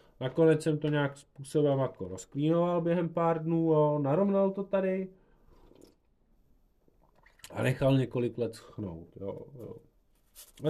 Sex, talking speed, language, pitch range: male, 125 wpm, Czech, 105-155 Hz